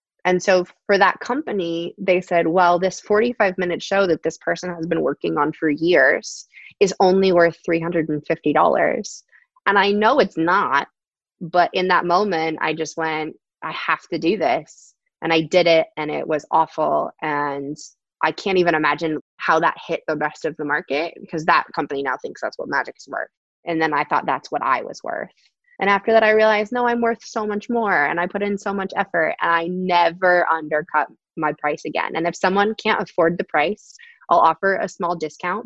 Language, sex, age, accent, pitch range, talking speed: English, female, 20-39, American, 155-200 Hz, 200 wpm